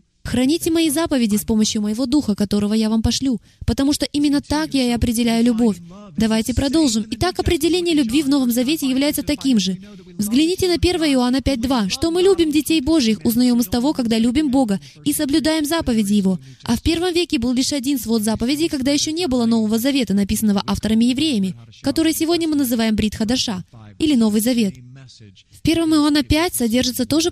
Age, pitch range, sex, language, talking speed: 20-39, 220-295 Hz, female, Russian, 180 wpm